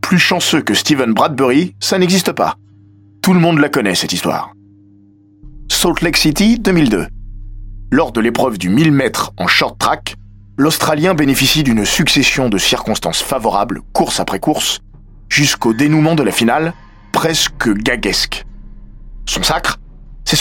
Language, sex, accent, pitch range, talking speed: French, male, French, 105-155 Hz, 140 wpm